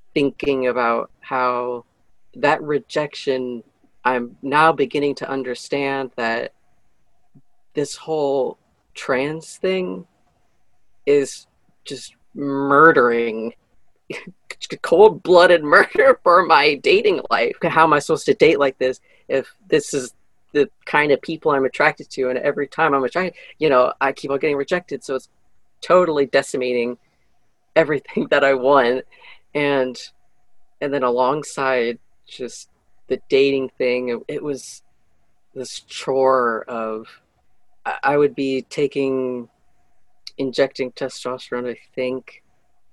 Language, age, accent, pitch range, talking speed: English, 40-59, American, 125-145 Hz, 120 wpm